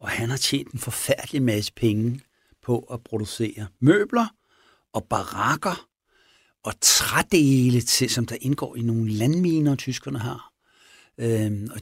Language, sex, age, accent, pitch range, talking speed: Danish, male, 60-79, native, 110-135 Hz, 130 wpm